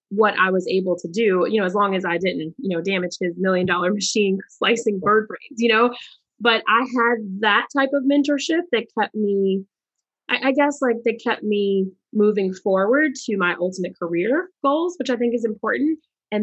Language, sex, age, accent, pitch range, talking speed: English, female, 20-39, American, 185-235 Hz, 195 wpm